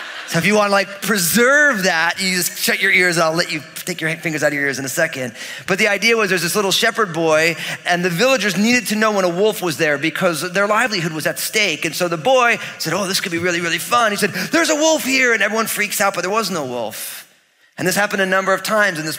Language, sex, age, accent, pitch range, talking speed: English, male, 30-49, American, 160-205 Hz, 275 wpm